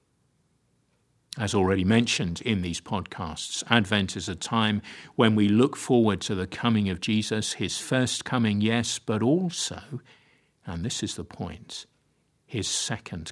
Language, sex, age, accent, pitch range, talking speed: English, male, 50-69, British, 95-120 Hz, 145 wpm